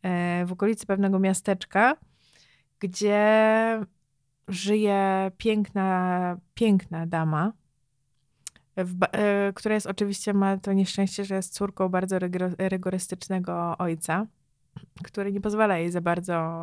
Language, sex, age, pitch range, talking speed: Polish, female, 20-39, 175-195 Hz, 95 wpm